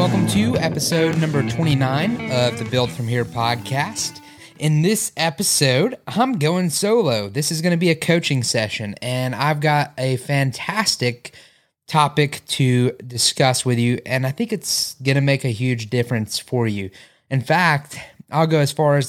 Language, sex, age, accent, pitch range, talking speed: English, male, 20-39, American, 115-150 Hz, 170 wpm